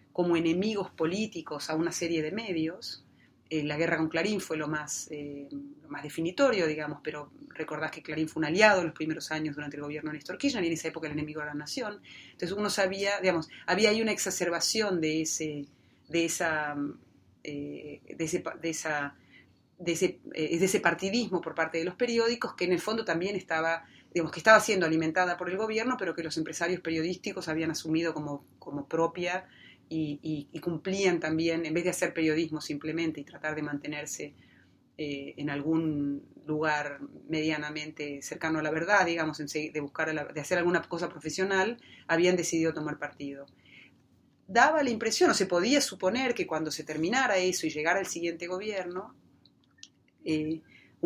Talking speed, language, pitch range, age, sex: 165 wpm, Spanish, 150-180 Hz, 30-49, female